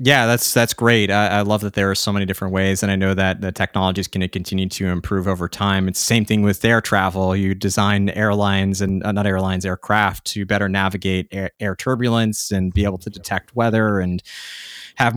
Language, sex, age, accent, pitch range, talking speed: English, male, 20-39, American, 95-115 Hz, 220 wpm